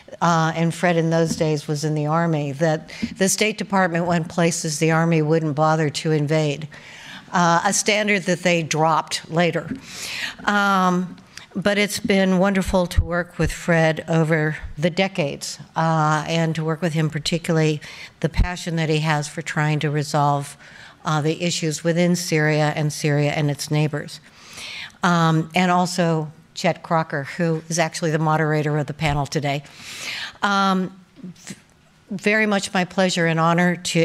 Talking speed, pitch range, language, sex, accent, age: 155 wpm, 160-190 Hz, English, female, American, 60-79